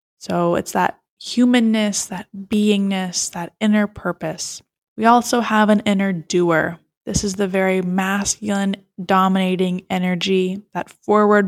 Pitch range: 175-210 Hz